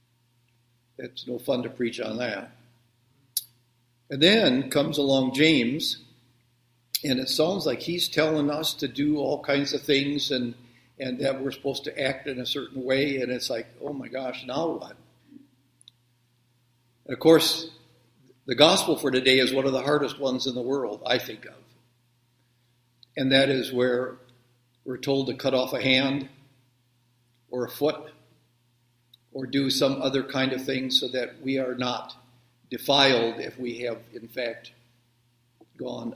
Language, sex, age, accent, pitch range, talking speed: English, male, 60-79, American, 120-140 Hz, 160 wpm